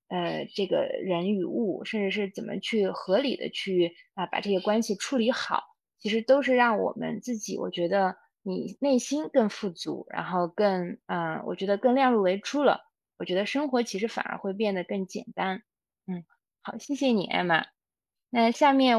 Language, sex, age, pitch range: Chinese, female, 20-39, 180-225 Hz